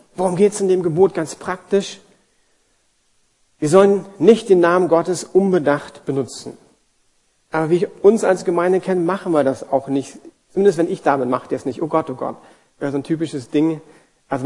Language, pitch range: German, 135-185 Hz